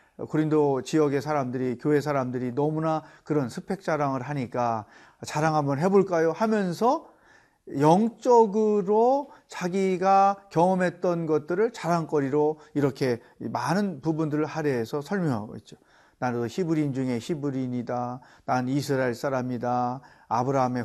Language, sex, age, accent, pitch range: Korean, male, 40-59, native, 135-180 Hz